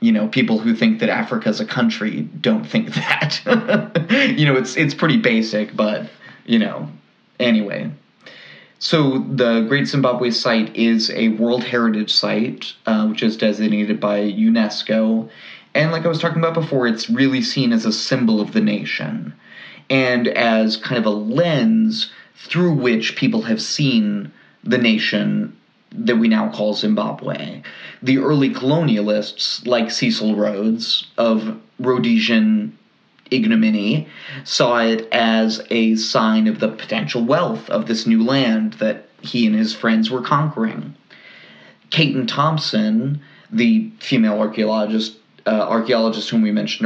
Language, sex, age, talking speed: English, male, 30-49, 145 wpm